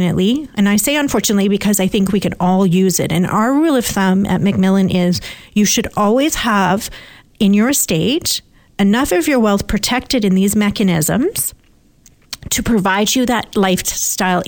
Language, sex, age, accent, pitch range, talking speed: English, female, 40-59, American, 185-225 Hz, 165 wpm